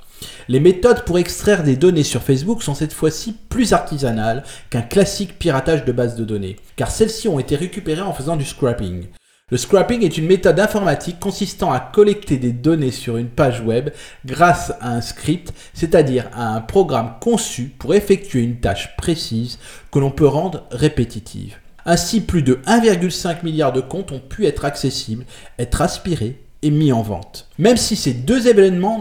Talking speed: 175 wpm